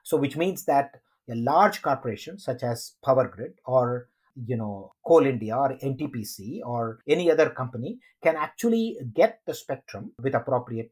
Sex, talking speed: male, 160 wpm